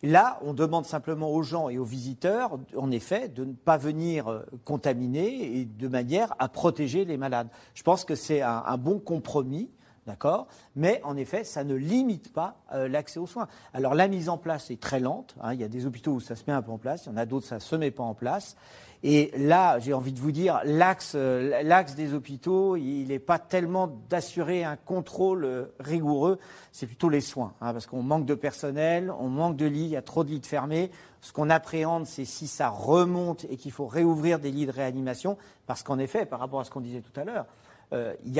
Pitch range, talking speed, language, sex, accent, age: 130-170 Hz, 225 wpm, French, male, French, 40-59